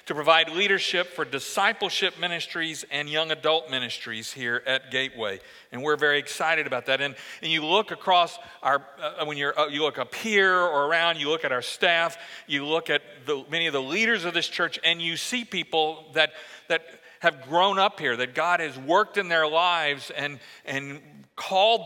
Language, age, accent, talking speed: English, 50-69, American, 195 wpm